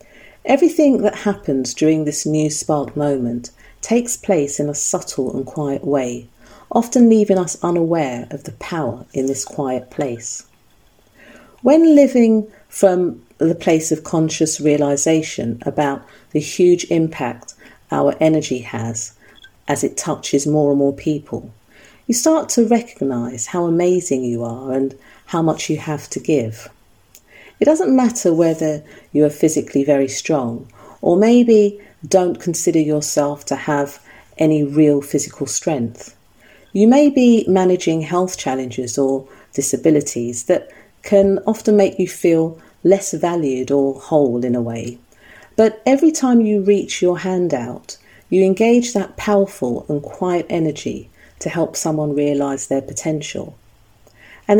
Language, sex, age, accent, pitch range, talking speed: English, female, 40-59, British, 135-195 Hz, 140 wpm